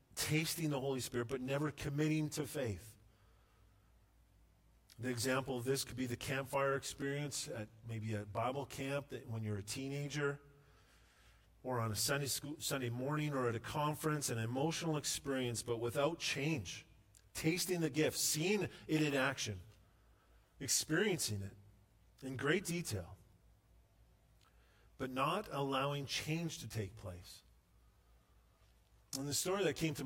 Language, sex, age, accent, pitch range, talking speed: English, male, 40-59, American, 115-150 Hz, 135 wpm